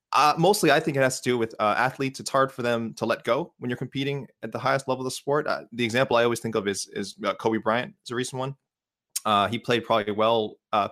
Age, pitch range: 20-39, 105-145 Hz